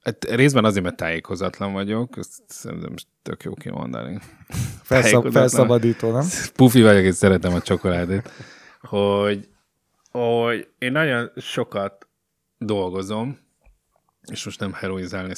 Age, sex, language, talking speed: 30-49, male, Hungarian, 115 wpm